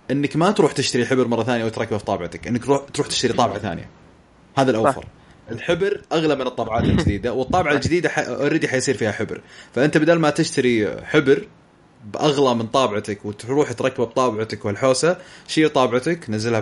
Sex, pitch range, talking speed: male, 115-145 Hz, 160 wpm